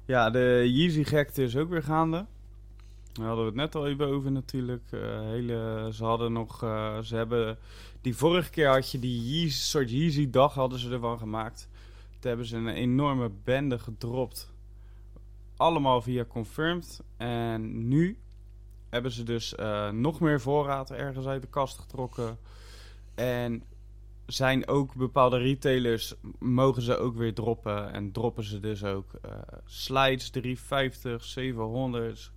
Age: 20-39